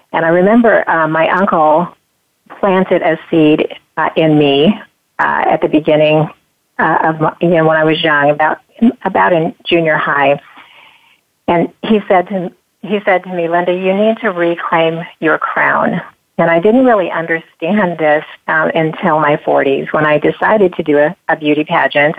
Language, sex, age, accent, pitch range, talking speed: English, female, 40-59, American, 150-175 Hz, 170 wpm